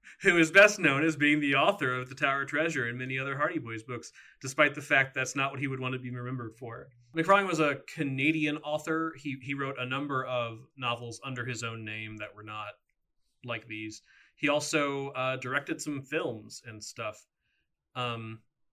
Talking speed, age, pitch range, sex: 200 wpm, 30-49, 110-140 Hz, male